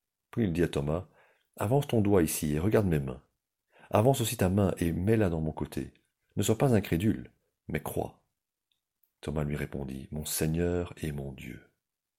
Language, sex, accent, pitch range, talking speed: French, male, French, 75-100 Hz, 175 wpm